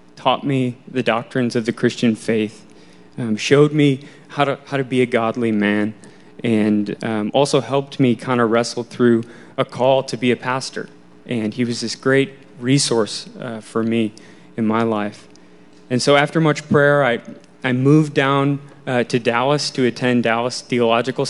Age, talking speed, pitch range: 20-39, 175 wpm, 115-135 Hz